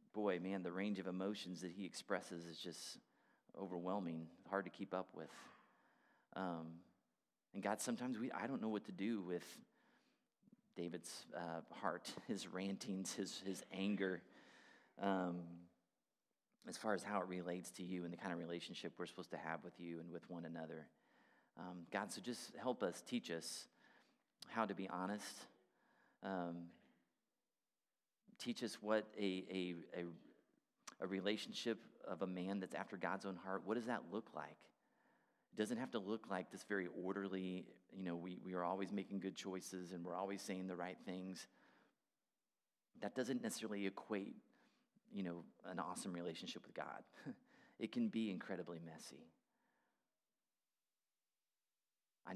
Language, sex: English, male